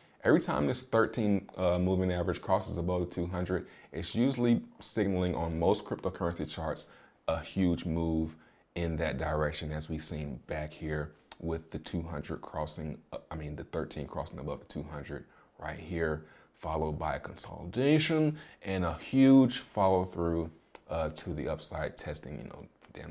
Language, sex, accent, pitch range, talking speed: English, male, American, 80-95 Hz, 155 wpm